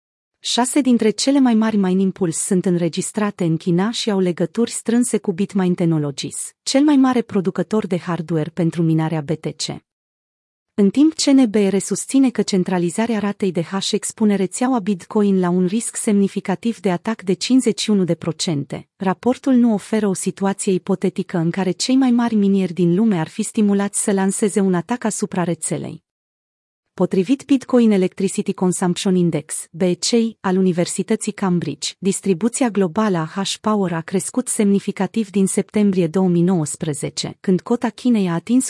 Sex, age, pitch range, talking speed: female, 30-49, 180-225 Hz, 150 wpm